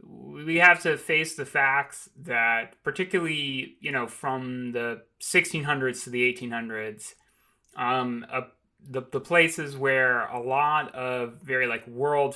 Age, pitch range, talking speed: 30-49, 125-150 Hz, 135 wpm